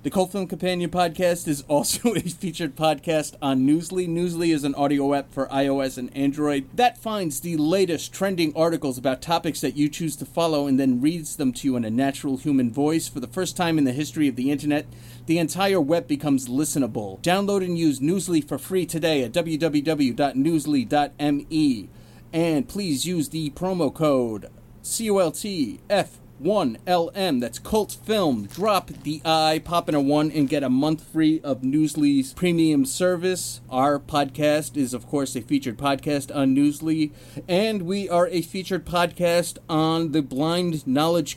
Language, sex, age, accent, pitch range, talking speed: English, male, 30-49, American, 140-170 Hz, 175 wpm